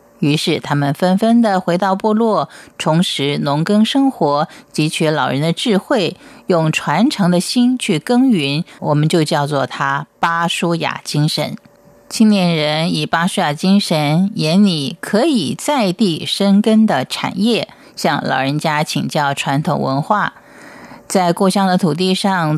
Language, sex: Chinese, female